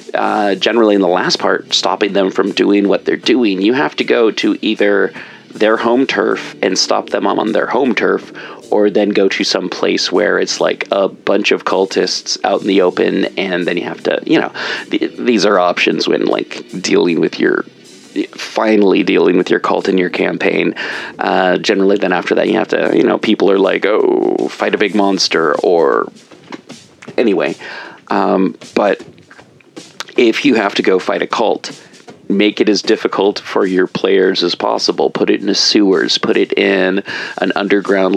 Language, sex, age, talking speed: English, male, 30-49, 185 wpm